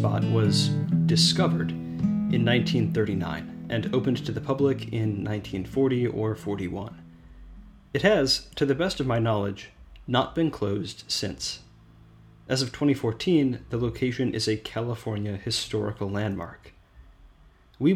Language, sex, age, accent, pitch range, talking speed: English, male, 30-49, American, 100-125 Hz, 120 wpm